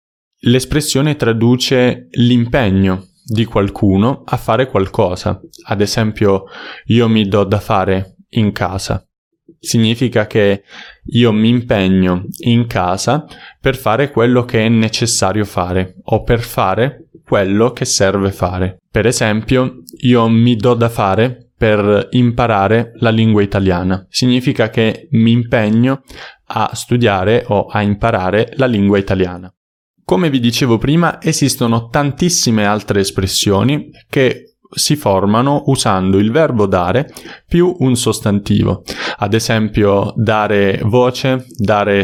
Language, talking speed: Italian, 120 wpm